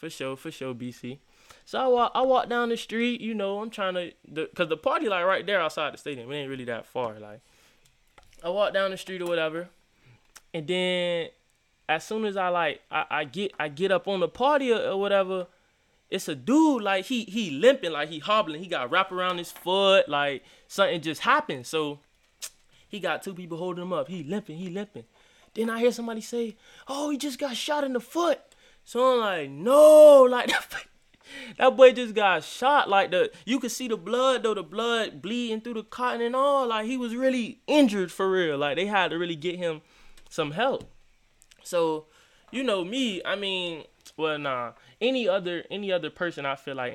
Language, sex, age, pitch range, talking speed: English, male, 20-39, 155-235 Hz, 210 wpm